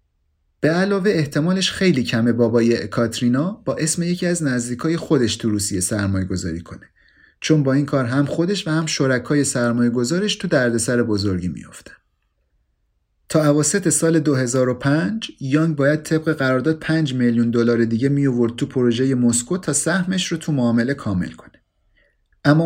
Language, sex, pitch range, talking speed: Persian, male, 115-150 Hz, 150 wpm